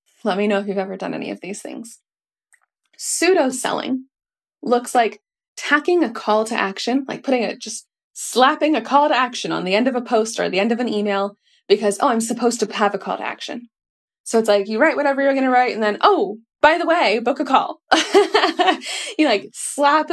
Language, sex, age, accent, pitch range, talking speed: English, female, 20-39, American, 210-295 Hz, 210 wpm